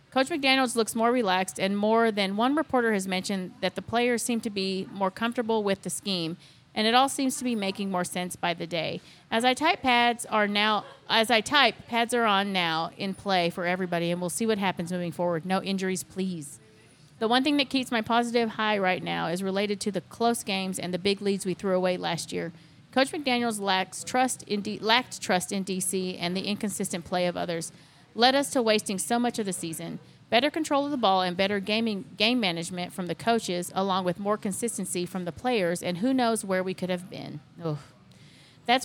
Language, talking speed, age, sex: English, 215 wpm, 40-59, female